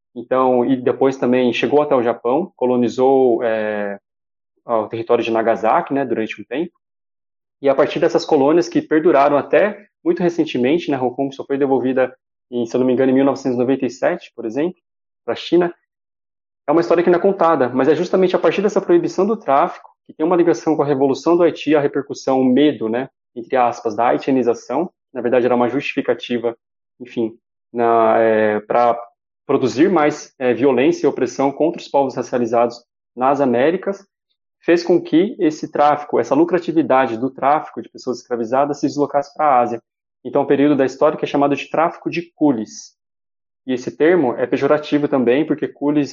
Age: 20-39